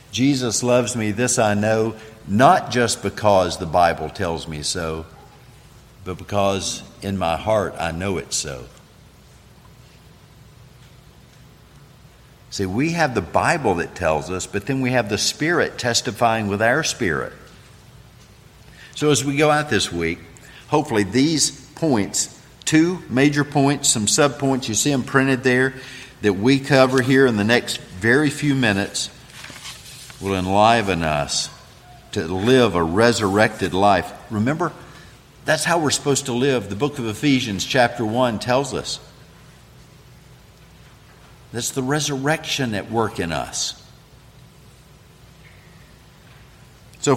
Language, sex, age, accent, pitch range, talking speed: English, male, 50-69, American, 105-135 Hz, 130 wpm